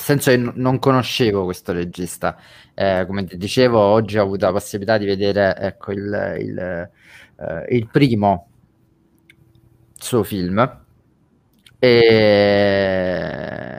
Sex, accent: male, native